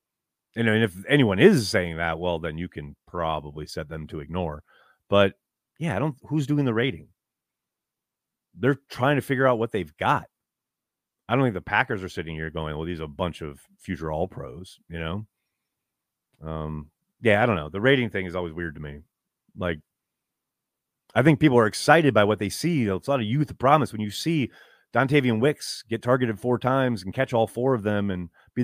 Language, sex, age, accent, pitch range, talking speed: English, male, 30-49, American, 90-130 Hz, 205 wpm